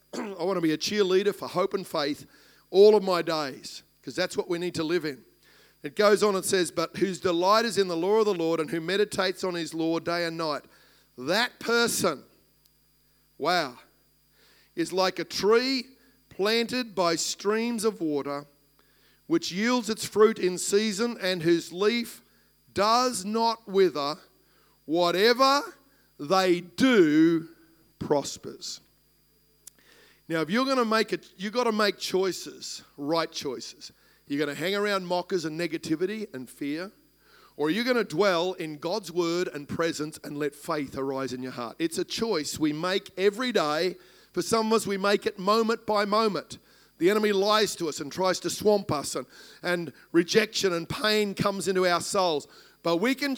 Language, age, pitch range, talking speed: English, 50-69, 165-215 Hz, 175 wpm